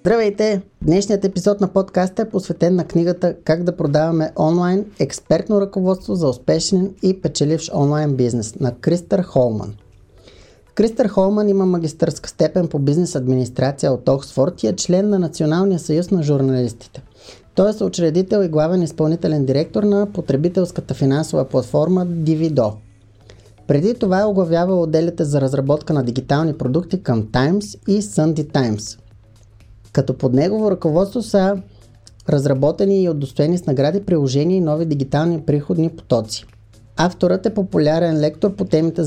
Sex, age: male, 30-49